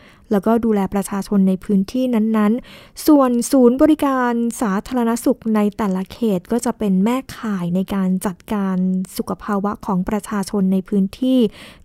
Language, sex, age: Thai, female, 20-39